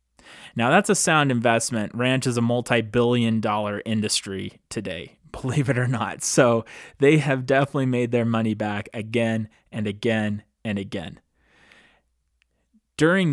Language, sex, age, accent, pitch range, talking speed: English, male, 20-39, American, 105-125 Hz, 135 wpm